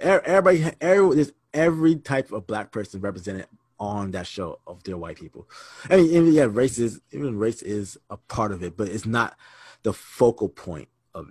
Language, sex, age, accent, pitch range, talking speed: English, male, 20-39, American, 100-130 Hz, 180 wpm